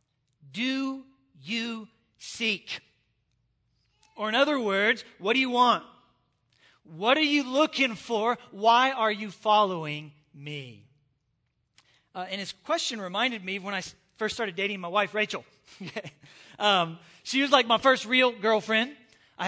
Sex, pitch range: male, 205-260 Hz